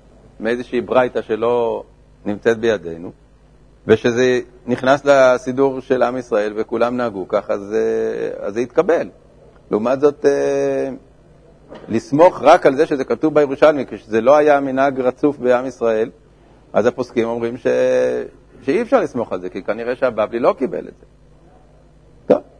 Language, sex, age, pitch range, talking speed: Hebrew, male, 50-69, 120-145 Hz, 135 wpm